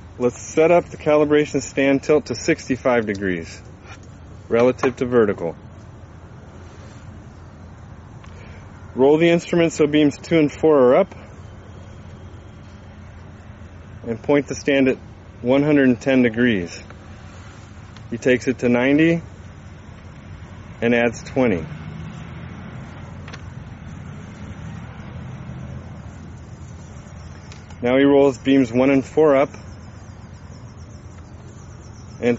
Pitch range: 100-125 Hz